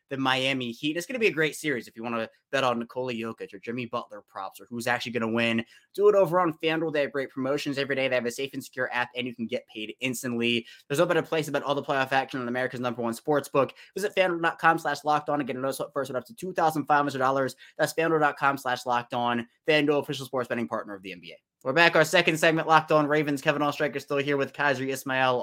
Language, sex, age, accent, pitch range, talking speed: English, male, 20-39, American, 120-150 Hz, 255 wpm